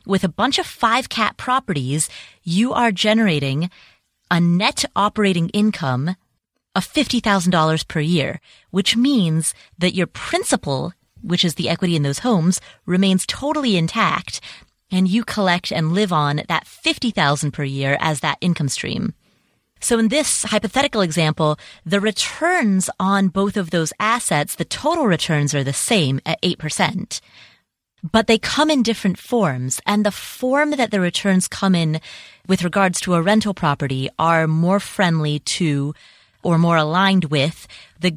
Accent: American